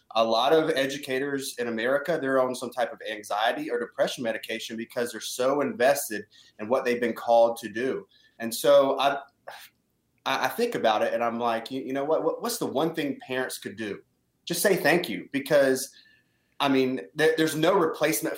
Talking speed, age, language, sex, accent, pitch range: 185 wpm, 30-49, English, male, American, 120-140 Hz